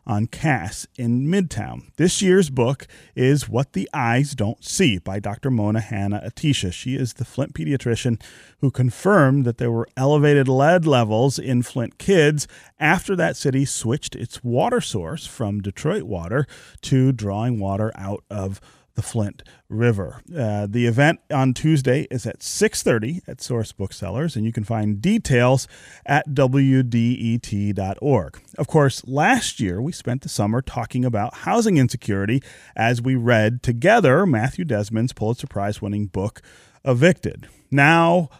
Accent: American